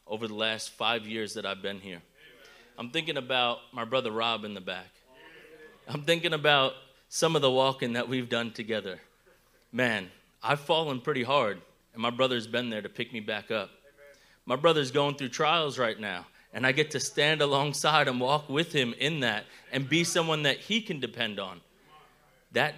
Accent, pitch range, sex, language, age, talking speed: American, 125-165 Hz, male, English, 30-49, 190 wpm